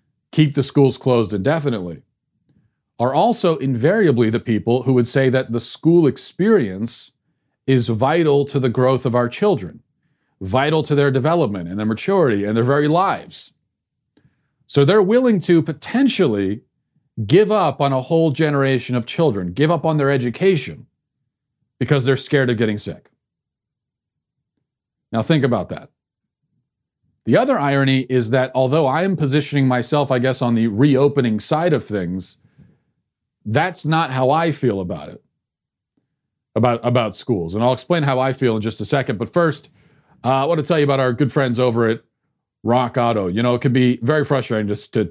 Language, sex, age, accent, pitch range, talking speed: English, male, 40-59, American, 110-145 Hz, 170 wpm